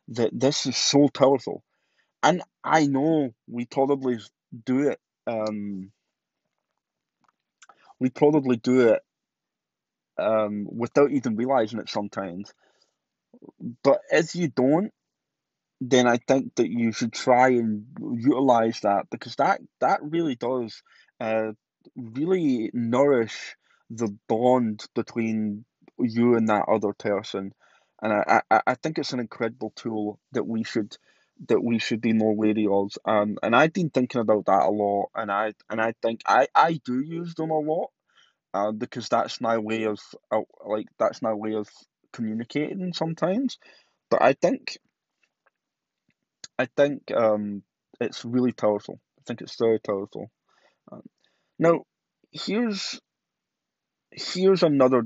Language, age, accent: English, 20-39, British